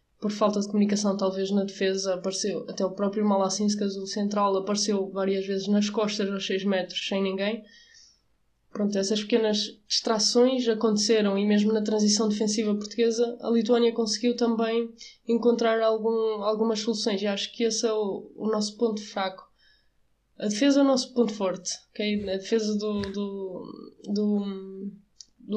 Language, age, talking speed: Portuguese, 20-39, 150 wpm